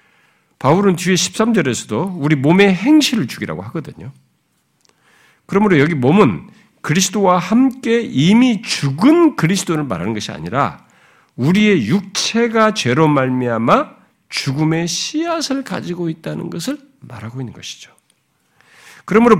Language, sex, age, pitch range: Korean, male, 50-69, 135-210 Hz